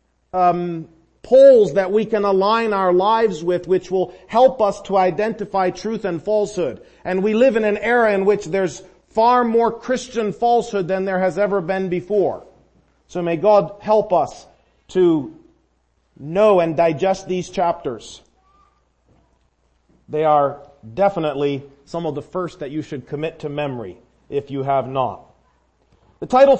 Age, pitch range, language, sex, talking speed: 40-59, 165-215 Hz, English, male, 150 wpm